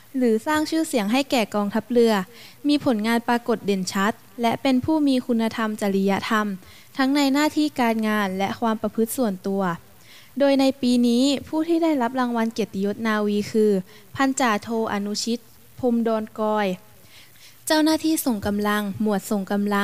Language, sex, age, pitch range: Thai, female, 20-39, 210-255 Hz